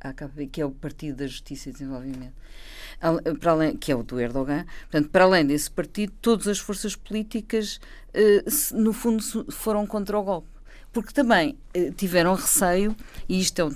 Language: Portuguese